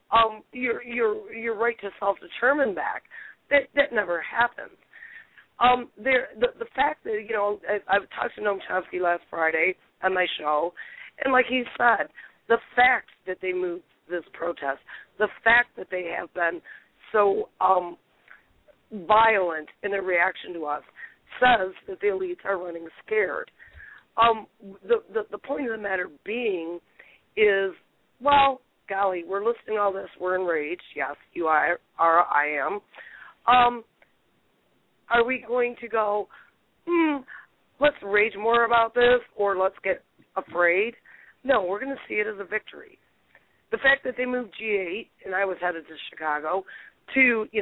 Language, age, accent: English, 40-59, American